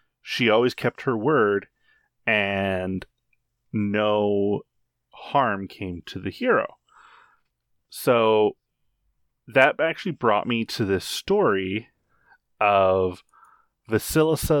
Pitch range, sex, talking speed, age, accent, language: 95-115 Hz, male, 90 wpm, 30-49, American, English